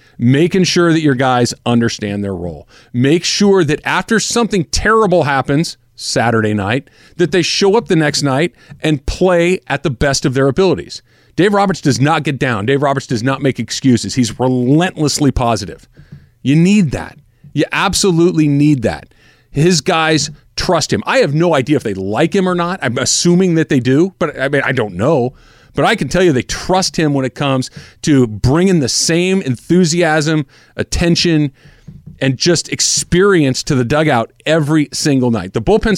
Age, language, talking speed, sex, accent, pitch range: 40-59, English, 175 wpm, male, American, 120-170 Hz